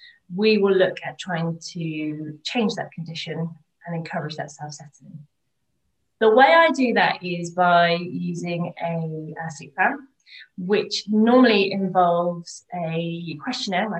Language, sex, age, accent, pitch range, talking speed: English, female, 20-39, British, 170-215 Hz, 135 wpm